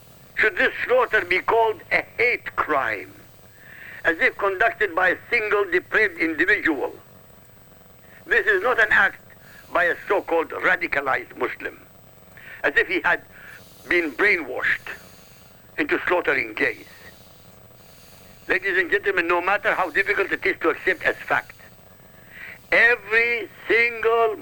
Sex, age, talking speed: male, 60-79, 125 wpm